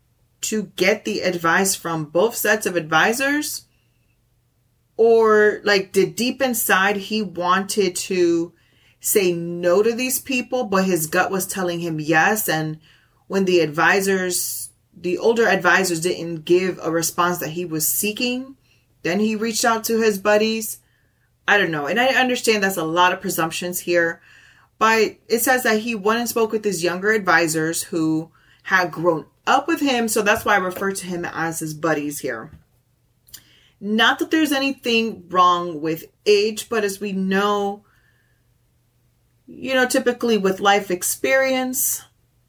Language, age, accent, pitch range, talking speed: English, 30-49, American, 155-220 Hz, 155 wpm